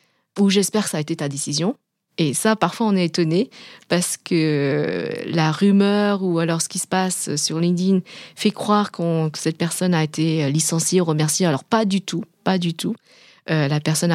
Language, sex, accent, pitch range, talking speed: French, female, French, 155-195 Hz, 200 wpm